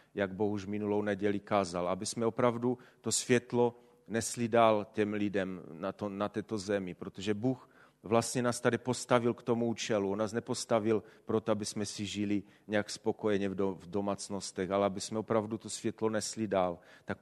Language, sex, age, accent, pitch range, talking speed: Czech, male, 40-59, native, 105-120 Hz, 175 wpm